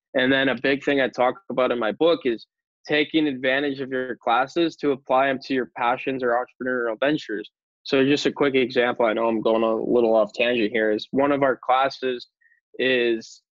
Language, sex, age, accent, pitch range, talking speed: English, male, 10-29, American, 120-140 Hz, 205 wpm